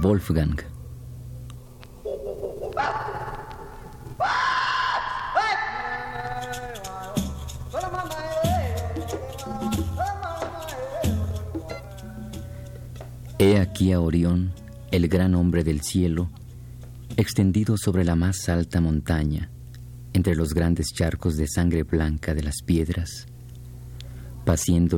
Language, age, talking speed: Spanish, 50-69, 65 wpm